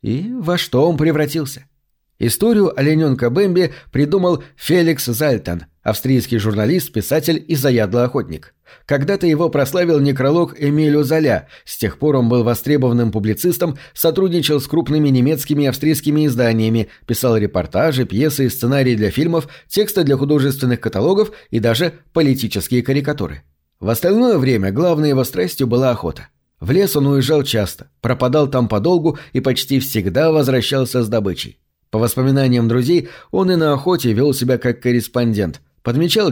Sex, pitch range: male, 120-155 Hz